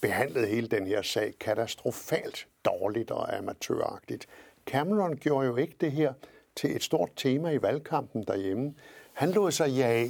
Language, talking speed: Danish, 155 wpm